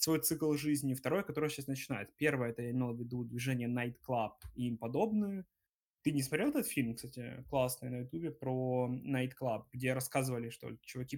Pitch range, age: 120-140 Hz, 20-39